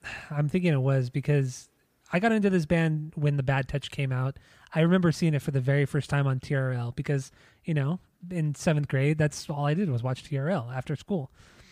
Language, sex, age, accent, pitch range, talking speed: English, male, 20-39, American, 135-155 Hz, 215 wpm